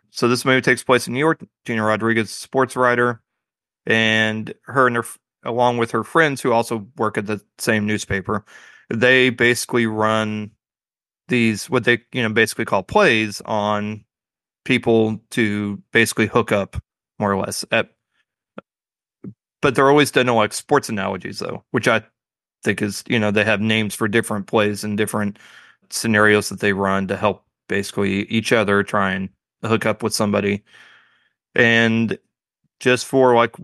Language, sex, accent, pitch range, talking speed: English, male, American, 105-120 Hz, 160 wpm